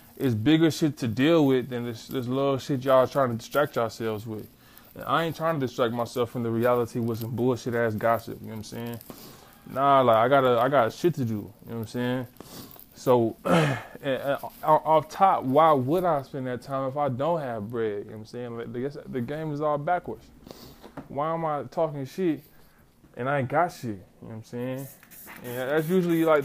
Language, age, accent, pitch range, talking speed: English, 20-39, American, 120-145 Hz, 220 wpm